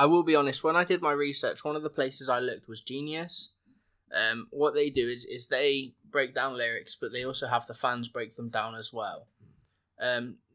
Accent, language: British, English